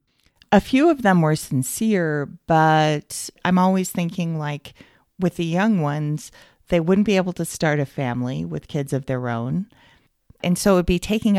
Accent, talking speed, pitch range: American, 175 wpm, 125-180 Hz